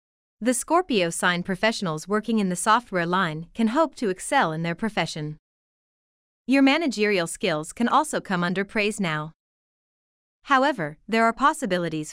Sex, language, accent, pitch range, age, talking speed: female, English, American, 180-245 Hz, 30-49, 145 wpm